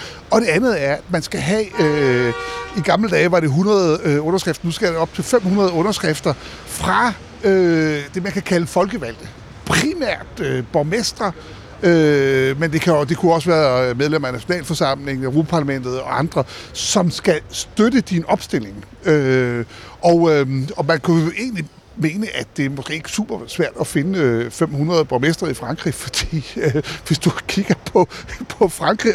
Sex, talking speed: male, 170 wpm